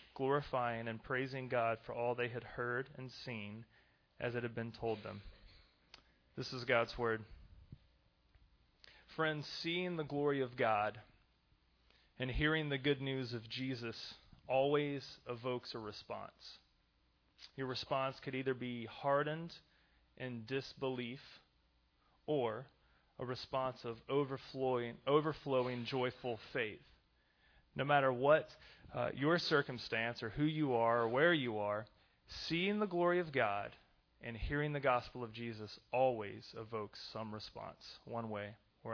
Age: 30-49